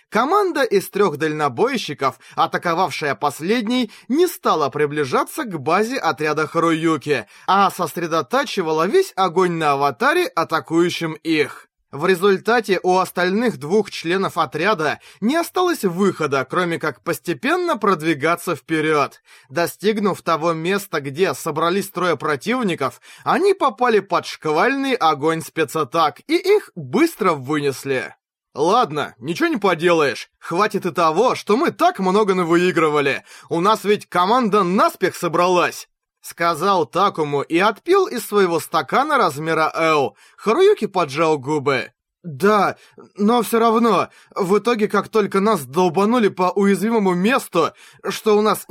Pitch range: 160-215 Hz